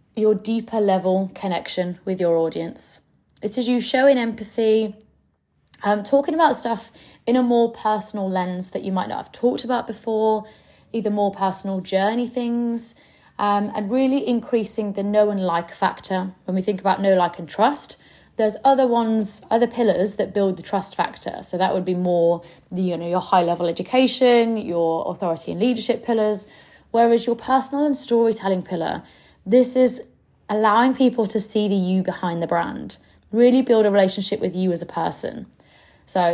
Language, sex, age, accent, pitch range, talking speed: English, female, 20-39, British, 185-235 Hz, 175 wpm